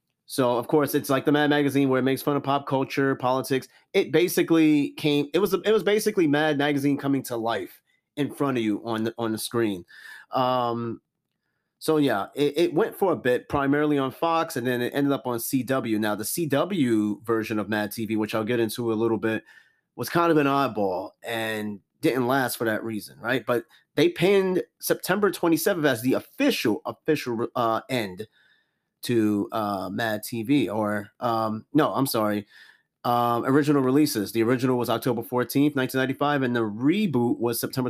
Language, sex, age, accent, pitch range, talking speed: English, male, 30-49, American, 115-145 Hz, 190 wpm